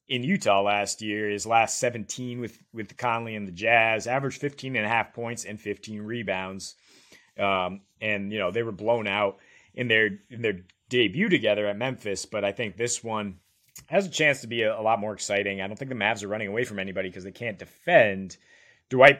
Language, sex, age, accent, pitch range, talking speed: English, male, 30-49, American, 100-125 Hz, 215 wpm